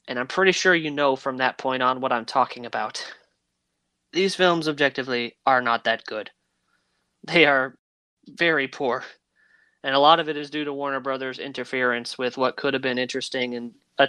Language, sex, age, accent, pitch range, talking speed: English, male, 20-39, American, 125-140 Hz, 185 wpm